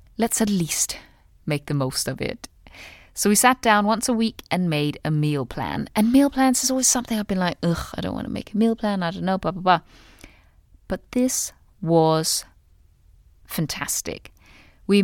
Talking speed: 195 wpm